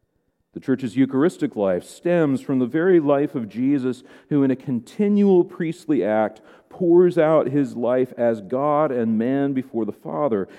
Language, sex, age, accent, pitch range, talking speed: English, male, 40-59, American, 120-170 Hz, 160 wpm